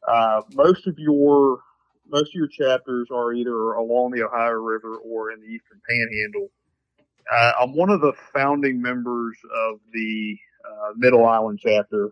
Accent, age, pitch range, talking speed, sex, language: American, 40-59, 110-125 Hz, 160 wpm, male, English